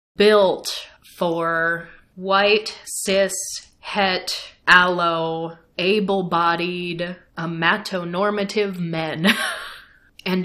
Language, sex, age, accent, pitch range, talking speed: English, female, 30-49, American, 165-200 Hz, 55 wpm